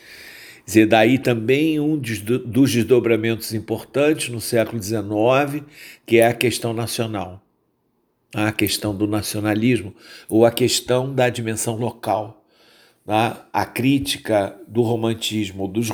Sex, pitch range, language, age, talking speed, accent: male, 105-120 Hz, Portuguese, 50-69, 115 wpm, Brazilian